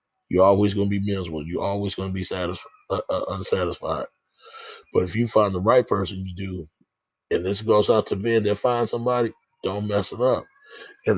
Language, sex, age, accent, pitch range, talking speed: English, male, 30-49, American, 95-110 Hz, 205 wpm